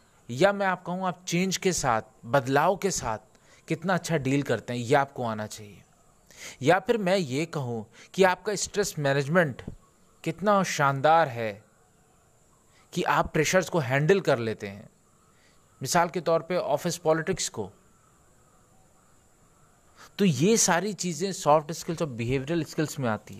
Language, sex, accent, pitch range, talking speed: Hindi, male, native, 140-185 Hz, 150 wpm